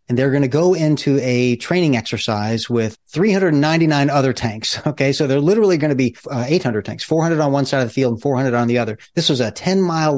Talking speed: 235 wpm